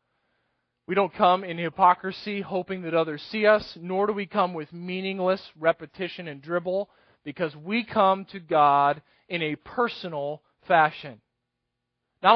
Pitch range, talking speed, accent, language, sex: 165-210 Hz, 140 wpm, American, English, male